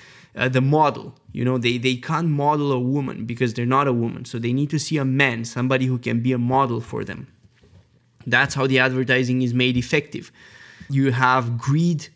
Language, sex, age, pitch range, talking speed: English, male, 20-39, 125-140 Hz, 200 wpm